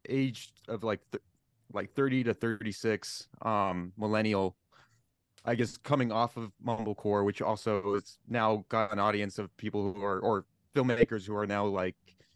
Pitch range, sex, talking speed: 100-120 Hz, male, 160 wpm